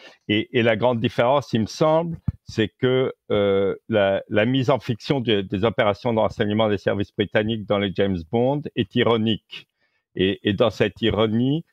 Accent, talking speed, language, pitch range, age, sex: French, 180 wpm, English, 95-115 Hz, 50-69, male